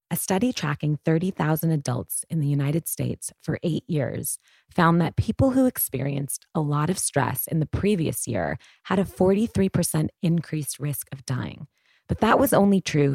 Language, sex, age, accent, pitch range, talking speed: English, female, 30-49, American, 145-195 Hz, 170 wpm